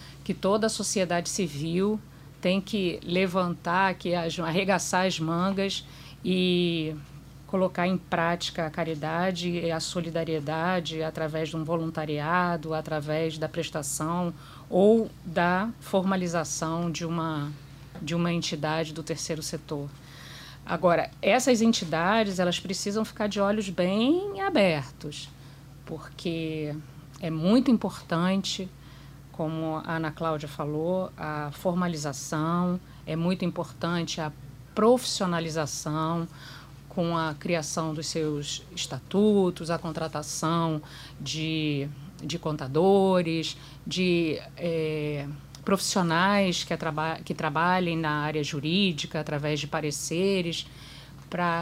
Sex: female